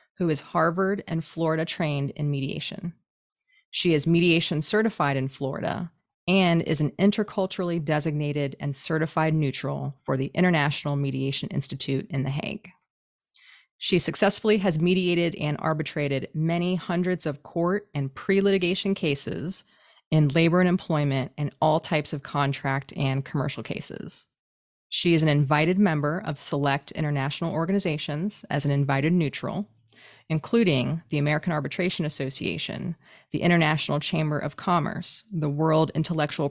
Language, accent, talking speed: English, American, 135 wpm